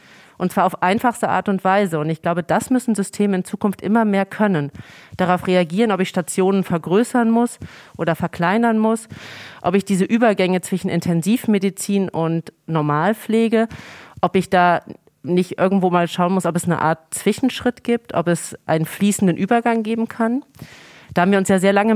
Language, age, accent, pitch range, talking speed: German, 30-49, German, 170-210 Hz, 175 wpm